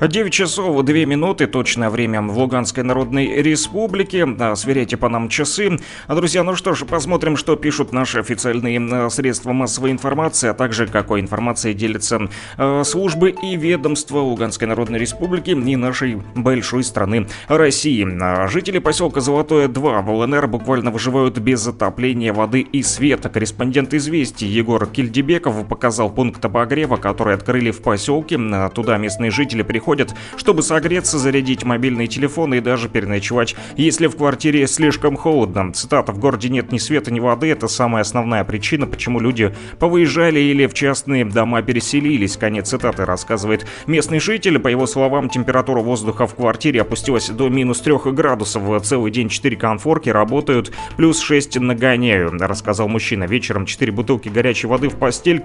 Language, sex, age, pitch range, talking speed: Russian, male, 30-49, 115-145 Hz, 155 wpm